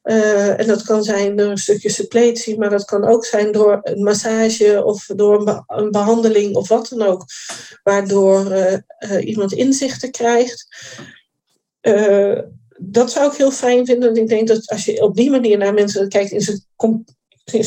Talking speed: 175 wpm